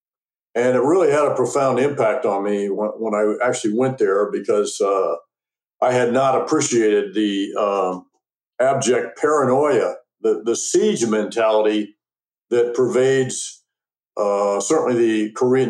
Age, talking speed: 60-79, 135 wpm